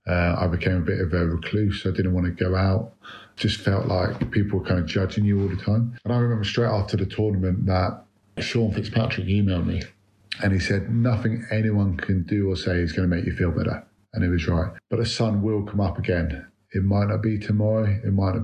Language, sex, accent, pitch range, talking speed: English, male, British, 95-110 Hz, 240 wpm